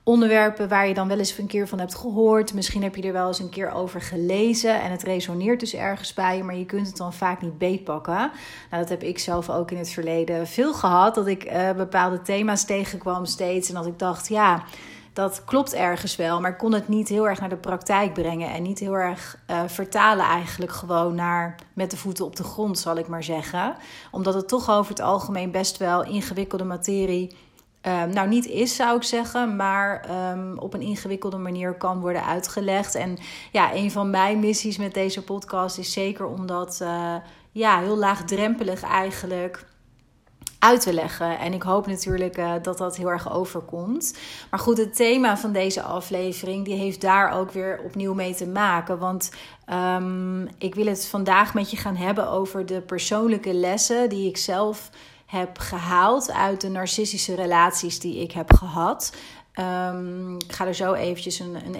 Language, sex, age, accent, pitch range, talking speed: Dutch, female, 30-49, Dutch, 180-205 Hz, 190 wpm